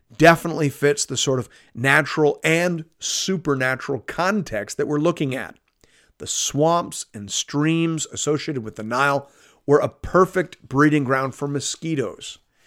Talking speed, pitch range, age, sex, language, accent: 135 wpm, 130-170 Hz, 40-59, male, English, American